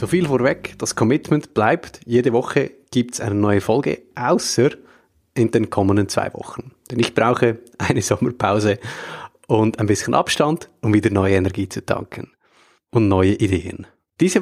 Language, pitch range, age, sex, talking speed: German, 105-130 Hz, 30-49, male, 160 wpm